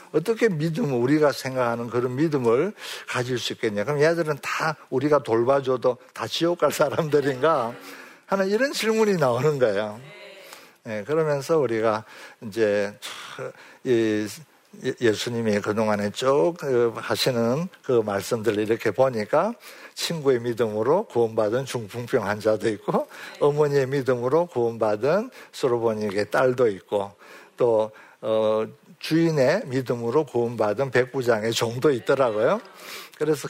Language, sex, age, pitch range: Korean, male, 60-79, 115-165 Hz